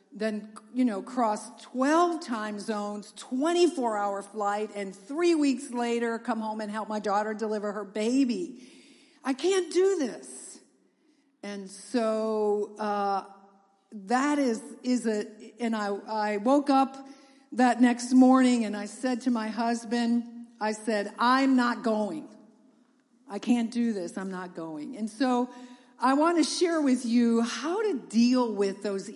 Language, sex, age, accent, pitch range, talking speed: English, female, 50-69, American, 210-265 Hz, 150 wpm